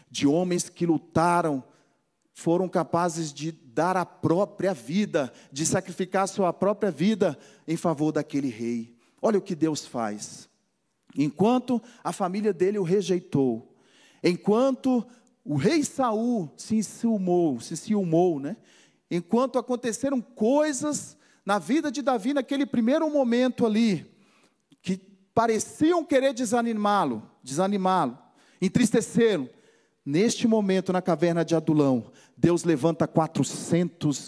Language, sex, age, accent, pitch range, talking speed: Portuguese, male, 40-59, Brazilian, 155-225 Hz, 115 wpm